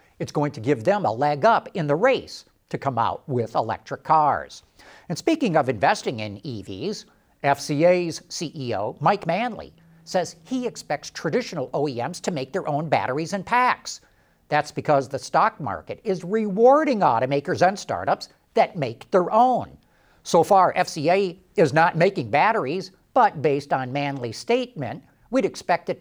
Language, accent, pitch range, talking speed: English, American, 150-220 Hz, 155 wpm